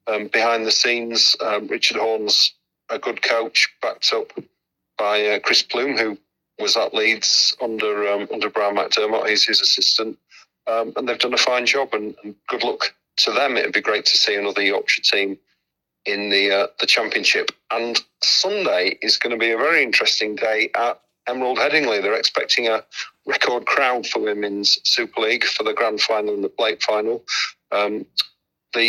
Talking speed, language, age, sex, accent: 180 wpm, English, 40-59, male, British